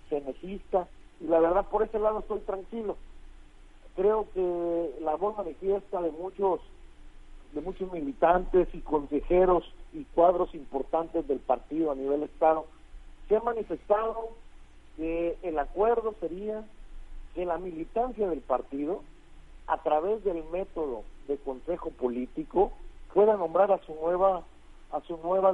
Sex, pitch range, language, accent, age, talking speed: male, 145-195 Hz, Spanish, Mexican, 50-69, 135 wpm